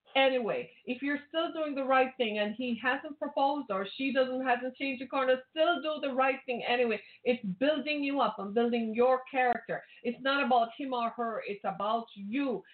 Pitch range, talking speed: 230-285 Hz, 195 wpm